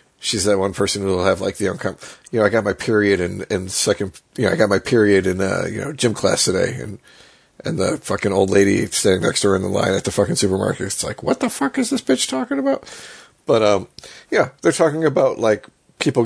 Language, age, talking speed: English, 40-59, 250 wpm